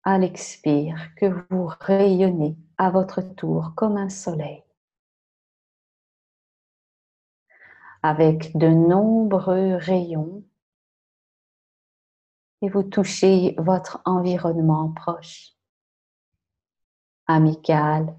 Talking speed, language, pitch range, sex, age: 75 wpm, French, 155-185 Hz, female, 40-59